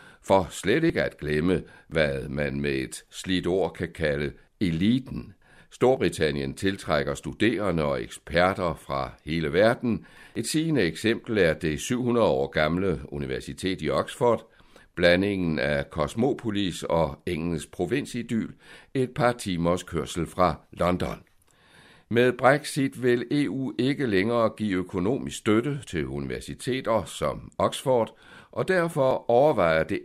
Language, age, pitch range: Danish, 60-79, 75-120 Hz